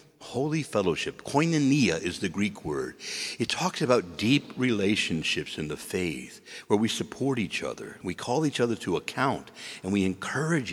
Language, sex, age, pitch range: English, male, 60-79, 90-140 Hz